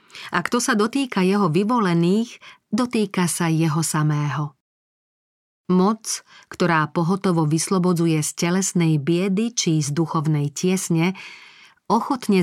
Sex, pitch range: female, 165-200 Hz